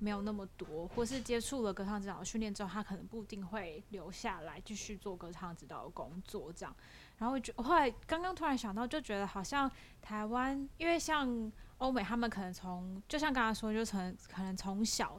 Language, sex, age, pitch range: Chinese, female, 10-29, 195-245 Hz